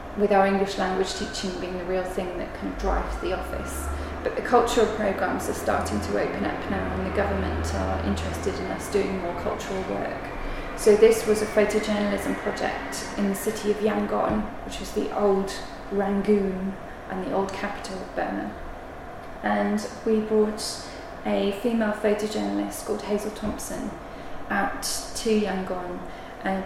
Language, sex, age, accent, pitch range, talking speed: English, female, 20-39, British, 190-215 Hz, 160 wpm